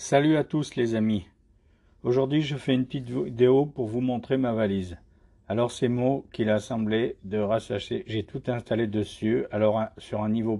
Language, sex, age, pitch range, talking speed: French, male, 50-69, 95-125 Hz, 185 wpm